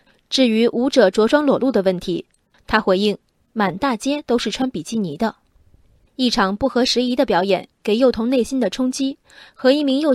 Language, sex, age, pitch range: Chinese, female, 20-39, 195-265 Hz